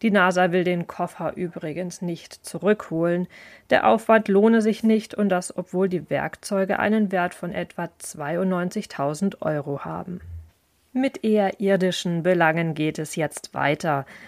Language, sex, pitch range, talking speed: German, female, 170-210 Hz, 140 wpm